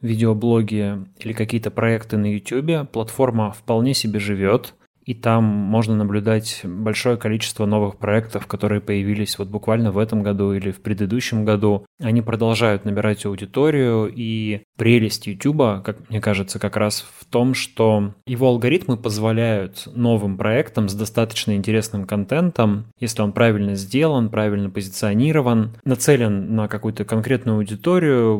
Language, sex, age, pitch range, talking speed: Russian, male, 20-39, 105-125 Hz, 135 wpm